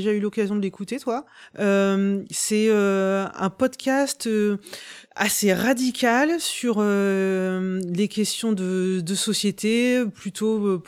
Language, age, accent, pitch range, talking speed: French, 30-49, French, 180-215 Hz, 125 wpm